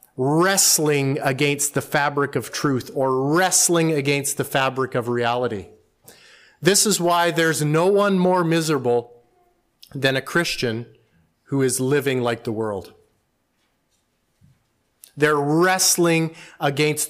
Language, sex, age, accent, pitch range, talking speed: English, male, 30-49, American, 130-165 Hz, 115 wpm